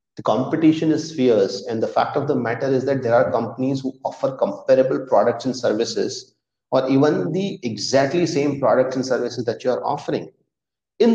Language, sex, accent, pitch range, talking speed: English, male, Indian, 130-165 Hz, 180 wpm